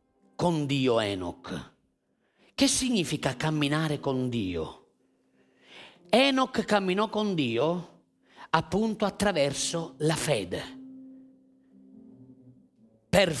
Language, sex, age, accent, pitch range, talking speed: Italian, male, 40-59, native, 135-190 Hz, 75 wpm